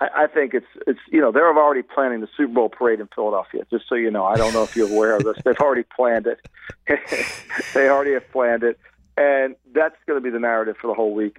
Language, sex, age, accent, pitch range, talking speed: English, male, 50-69, American, 110-125 Hz, 240 wpm